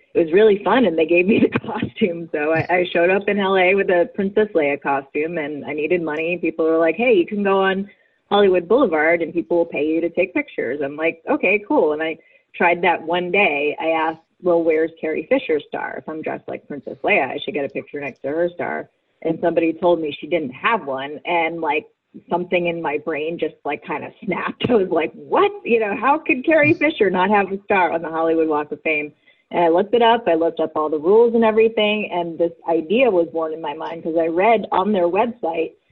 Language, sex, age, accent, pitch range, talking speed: English, female, 30-49, American, 160-215 Hz, 235 wpm